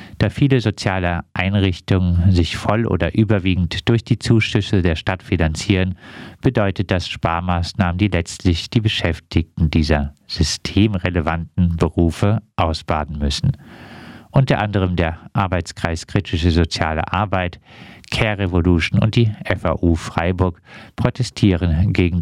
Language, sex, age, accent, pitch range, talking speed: German, male, 50-69, German, 85-110 Hz, 110 wpm